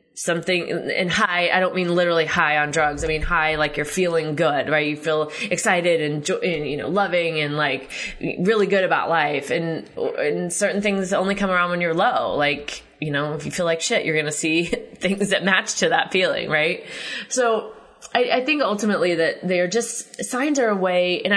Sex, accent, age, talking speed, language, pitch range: female, American, 20-39, 210 wpm, English, 165-205 Hz